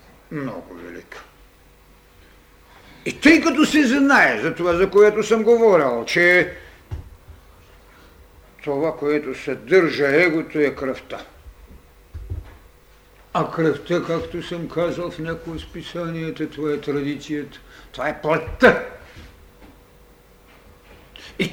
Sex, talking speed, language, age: male, 100 wpm, Bulgarian, 60-79